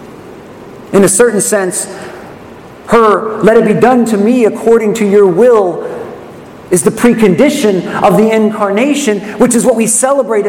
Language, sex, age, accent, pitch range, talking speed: English, male, 40-59, American, 140-225 Hz, 150 wpm